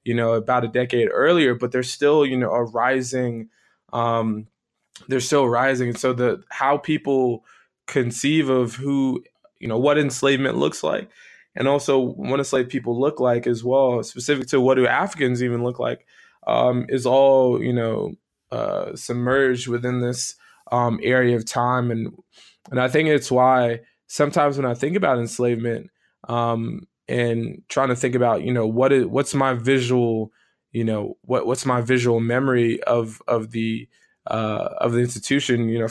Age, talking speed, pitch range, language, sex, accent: 20-39, 170 wpm, 120-135 Hz, English, male, American